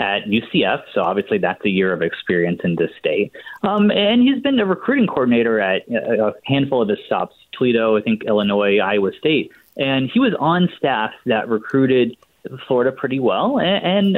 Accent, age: American, 20-39